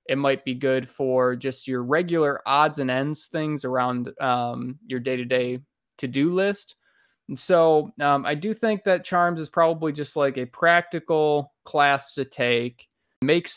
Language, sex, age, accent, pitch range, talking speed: English, male, 20-39, American, 135-165 Hz, 160 wpm